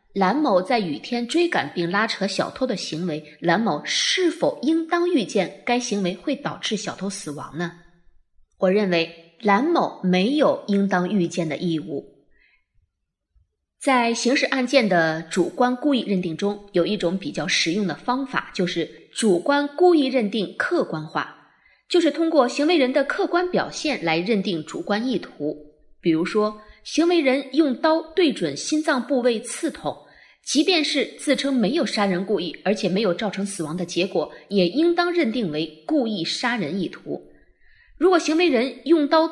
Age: 20-39